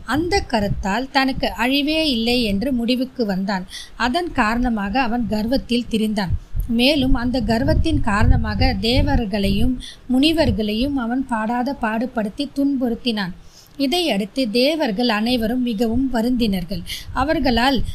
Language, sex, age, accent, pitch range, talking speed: Tamil, female, 20-39, native, 225-280 Hz, 95 wpm